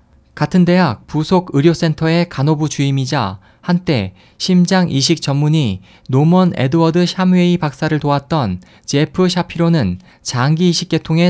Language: Korean